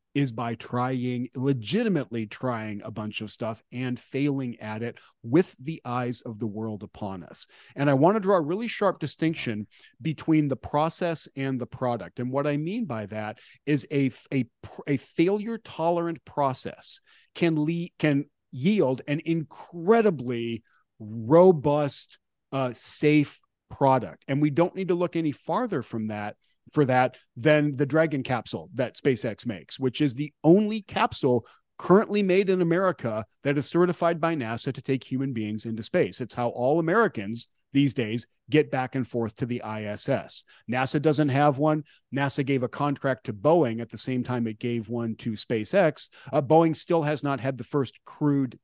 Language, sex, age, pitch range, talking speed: English, male, 40-59, 120-155 Hz, 170 wpm